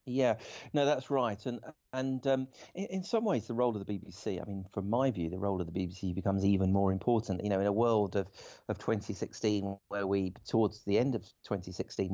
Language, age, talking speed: English, 40-59, 230 wpm